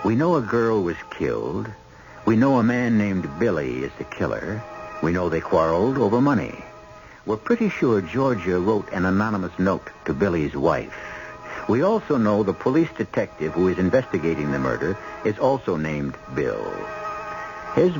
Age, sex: 60-79, male